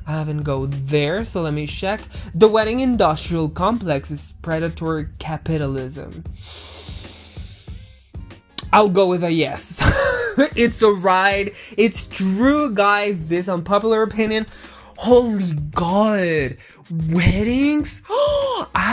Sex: male